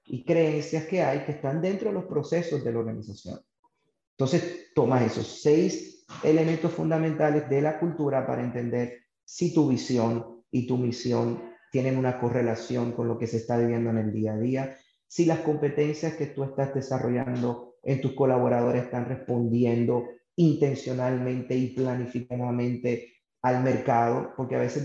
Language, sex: English, male